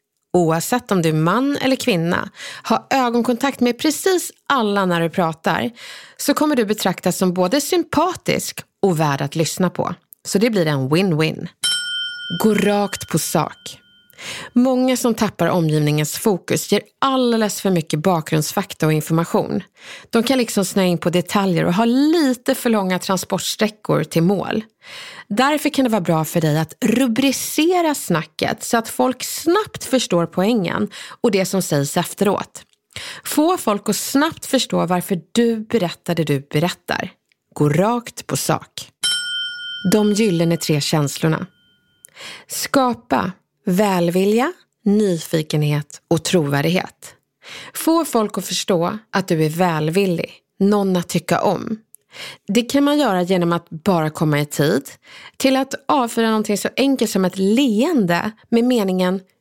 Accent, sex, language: native, female, Swedish